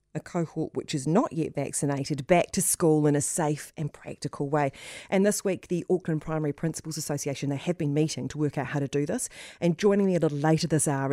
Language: English